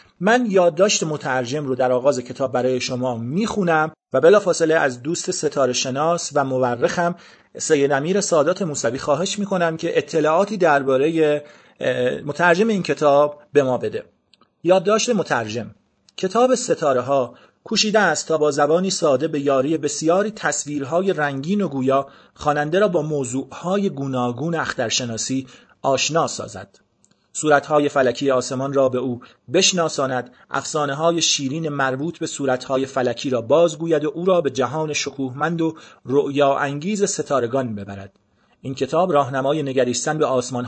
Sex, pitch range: male, 130-170 Hz